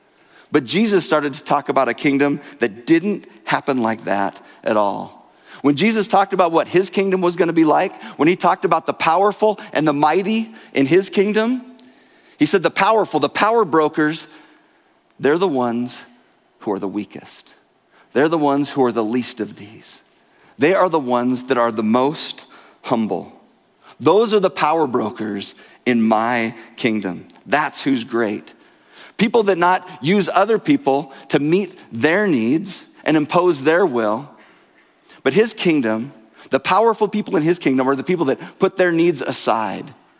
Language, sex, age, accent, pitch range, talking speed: English, male, 40-59, American, 130-195 Hz, 165 wpm